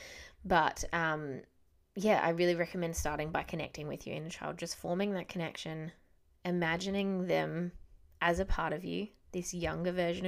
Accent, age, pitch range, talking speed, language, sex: Australian, 20-39, 165-200 Hz, 160 wpm, English, female